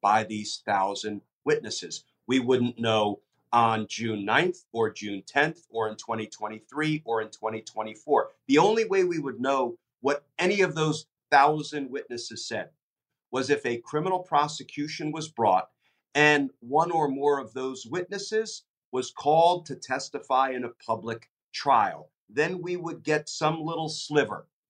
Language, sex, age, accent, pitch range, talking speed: English, male, 50-69, American, 115-150 Hz, 150 wpm